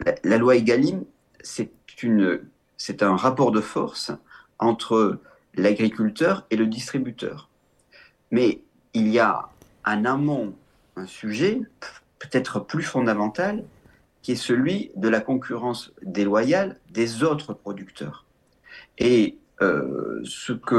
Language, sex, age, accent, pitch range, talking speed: French, male, 50-69, French, 100-125 Hz, 115 wpm